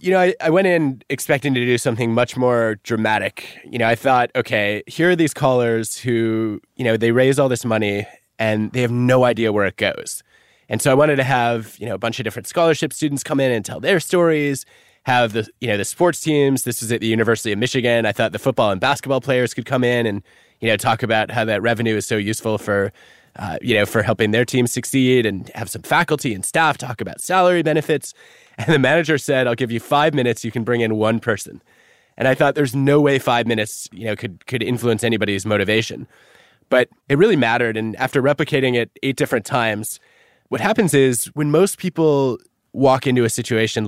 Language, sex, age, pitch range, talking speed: English, male, 20-39, 110-140 Hz, 225 wpm